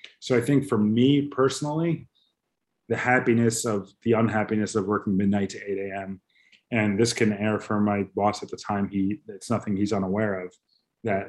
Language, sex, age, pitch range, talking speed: English, male, 30-49, 105-120 Hz, 180 wpm